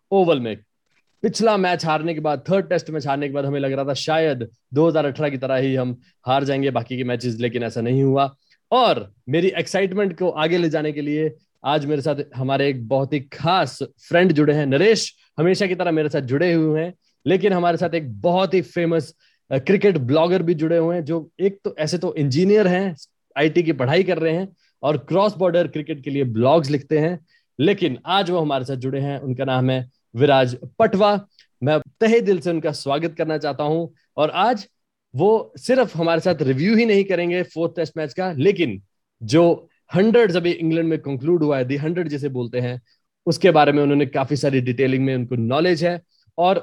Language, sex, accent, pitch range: Hindi, male, native, 135-180 Hz